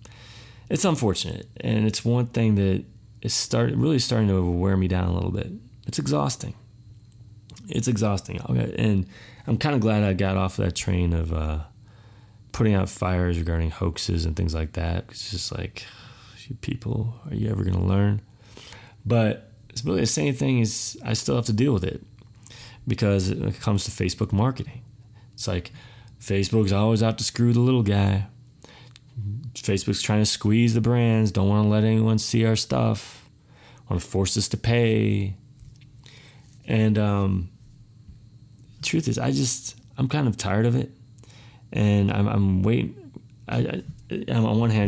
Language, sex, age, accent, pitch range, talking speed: English, male, 30-49, American, 100-120 Hz, 170 wpm